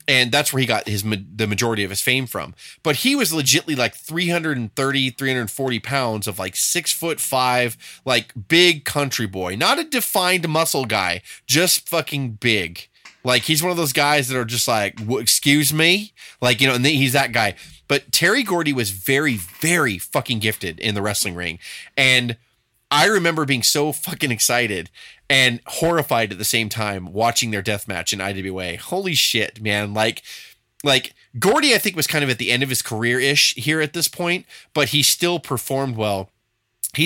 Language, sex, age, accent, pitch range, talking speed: English, male, 20-39, American, 110-150 Hz, 185 wpm